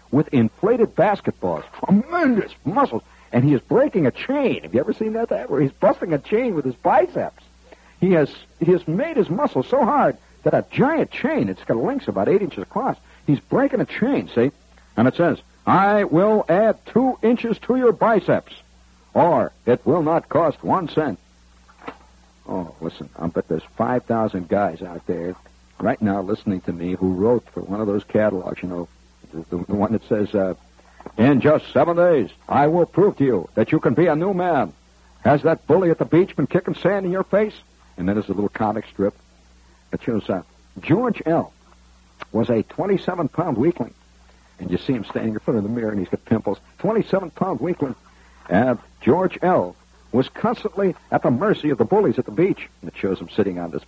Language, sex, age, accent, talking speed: English, male, 60-79, American, 200 wpm